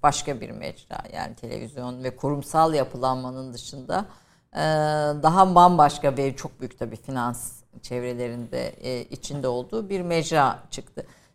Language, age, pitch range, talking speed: Turkish, 50-69, 135-180 Hz, 115 wpm